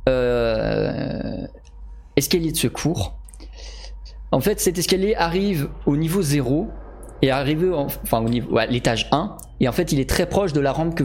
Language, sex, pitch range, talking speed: French, male, 110-170 Hz, 175 wpm